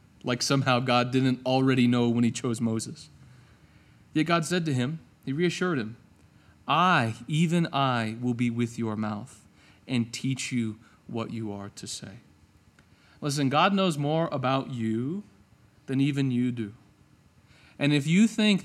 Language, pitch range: English, 120-165 Hz